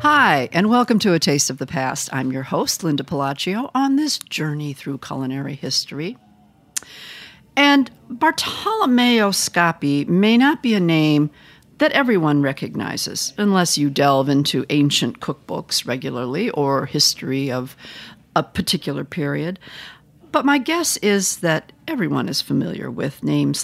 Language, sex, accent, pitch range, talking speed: English, female, American, 140-220 Hz, 135 wpm